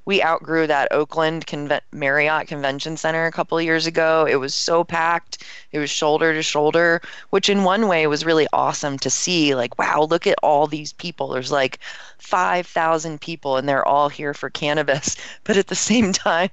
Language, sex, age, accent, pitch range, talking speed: English, female, 30-49, American, 140-165 Hz, 190 wpm